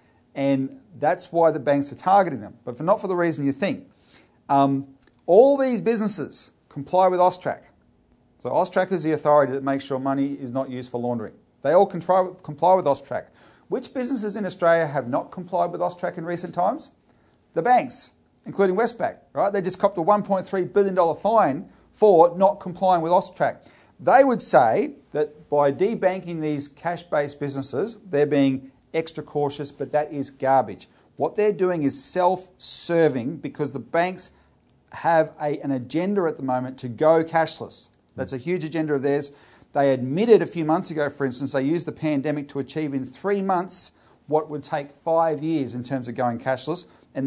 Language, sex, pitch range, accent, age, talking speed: English, male, 135-180 Hz, Australian, 40-59, 175 wpm